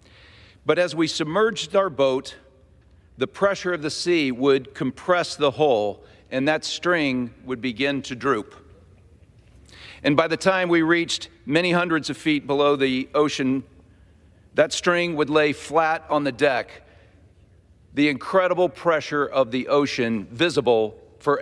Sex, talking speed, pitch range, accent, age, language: male, 145 wpm, 105-165 Hz, American, 50-69, English